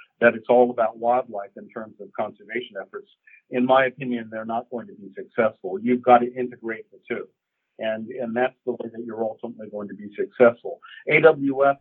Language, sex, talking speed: English, male, 195 wpm